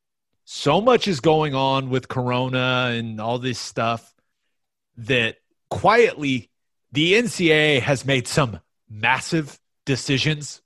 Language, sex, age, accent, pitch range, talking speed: English, male, 30-49, American, 125-155 Hz, 115 wpm